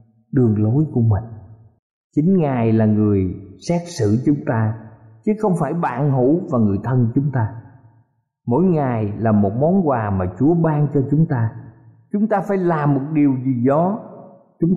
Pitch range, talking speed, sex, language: 120-170 Hz, 175 wpm, male, Vietnamese